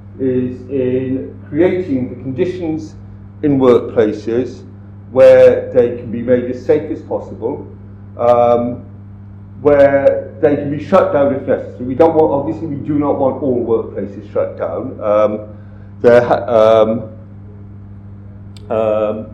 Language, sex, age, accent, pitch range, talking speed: English, male, 50-69, British, 100-140 Hz, 125 wpm